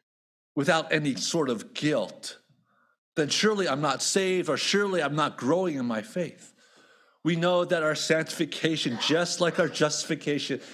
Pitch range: 145-180 Hz